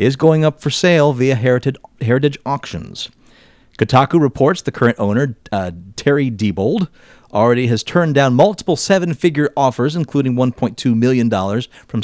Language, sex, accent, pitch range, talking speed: English, male, American, 115-160 Hz, 135 wpm